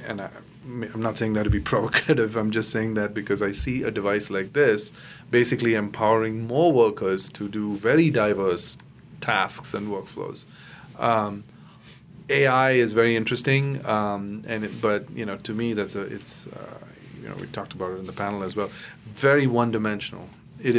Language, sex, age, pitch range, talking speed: English, male, 30-49, 105-135 Hz, 180 wpm